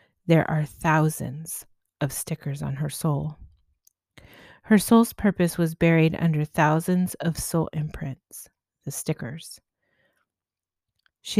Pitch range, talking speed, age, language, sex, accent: 150-175 Hz, 110 wpm, 30-49, English, female, American